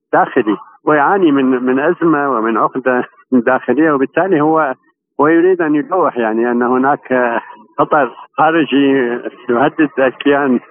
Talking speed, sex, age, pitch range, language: 110 wpm, male, 60-79, 120-150 Hz, Arabic